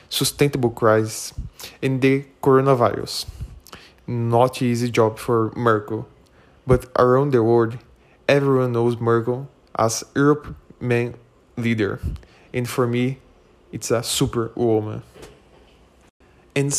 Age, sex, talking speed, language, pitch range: 20-39, male, 105 wpm, English, 115-130 Hz